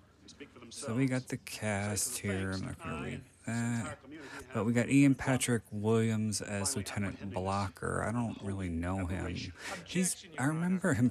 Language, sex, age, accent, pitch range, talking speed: English, male, 30-49, American, 90-120 Hz, 160 wpm